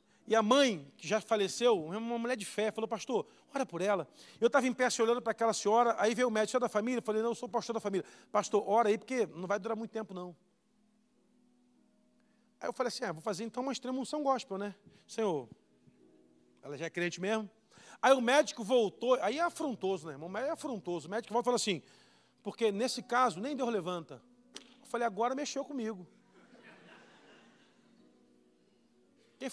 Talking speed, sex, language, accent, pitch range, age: 195 wpm, male, Portuguese, Brazilian, 185-245 Hz, 40-59